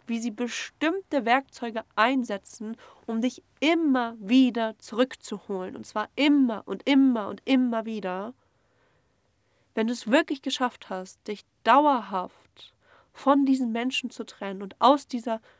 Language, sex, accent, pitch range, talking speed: German, female, German, 200-255 Hz, 130 wpm